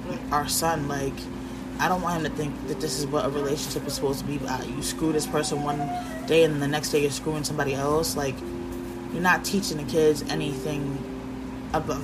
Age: 20-39